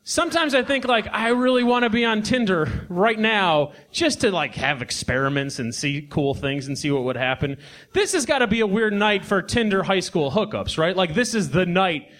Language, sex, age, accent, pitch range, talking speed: English, male, 30-49, American, 100-150 Hz, 225 wpm